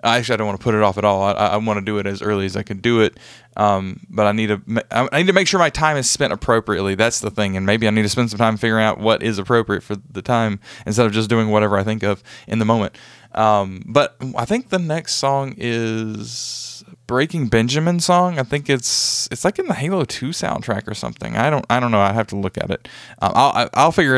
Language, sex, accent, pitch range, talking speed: English, male, American, 105-125 Hz, 265 wpm